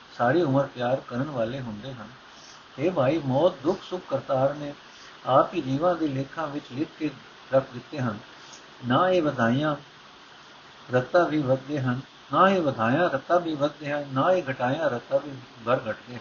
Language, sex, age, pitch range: Punjabi, male, 60-79, 125-155 Hz